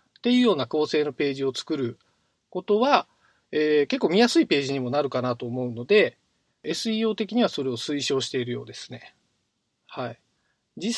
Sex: male